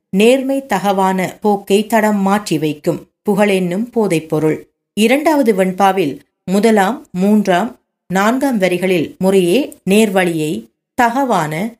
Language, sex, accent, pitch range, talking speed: Tamil, female, native, 180-230 Hz, 90 wpm